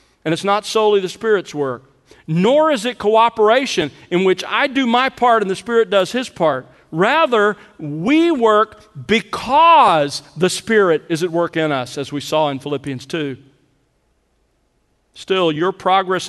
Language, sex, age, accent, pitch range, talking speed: English, male, 50-69, American, 150-215 Hz, 160 wpm